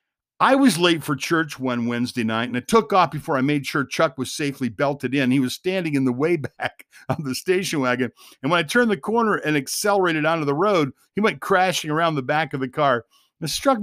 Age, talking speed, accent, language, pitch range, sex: 50-69, 235 wpm, American, English, 125-165 Hz, male